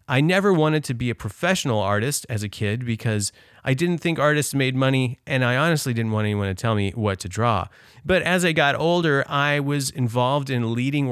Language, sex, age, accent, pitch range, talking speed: English, male, 30-49, American, 115-150 Hz, 215 wpm